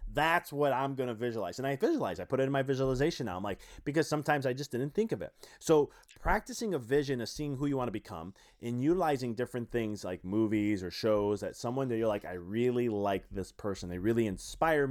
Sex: male